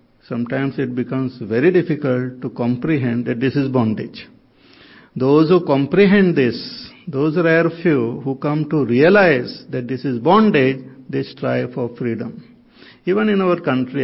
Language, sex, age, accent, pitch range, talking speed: English, male, 50-69, Indian, 125-165 Hz, 145 wpm